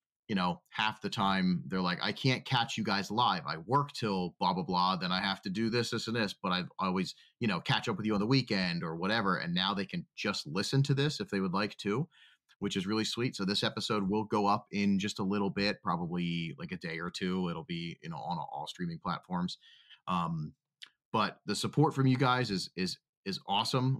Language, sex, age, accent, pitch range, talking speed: English, male, 30-49, American, 95-125 Hz, 240 wpm